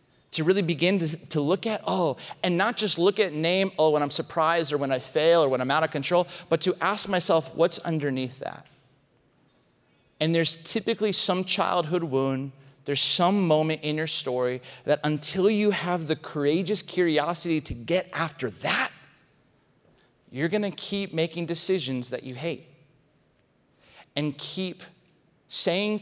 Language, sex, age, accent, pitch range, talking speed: English, male, 30-49, American, 150-190 Hz, 160 wpm